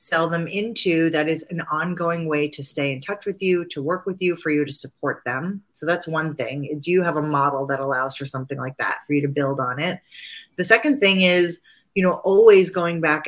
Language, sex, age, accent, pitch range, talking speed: English, female, 30-49, American, 150-185 Hz, 245 wpm